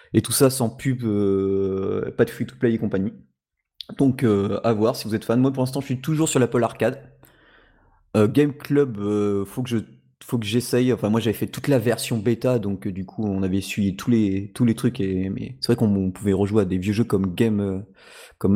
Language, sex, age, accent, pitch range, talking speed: French, male, 30-49, French, 100-130 Hz, 240 wpm